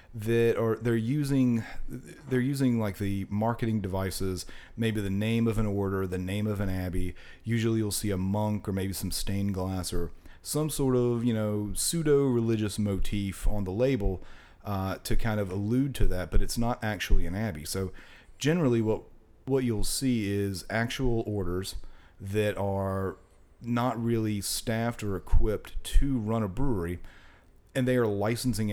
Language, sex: English, male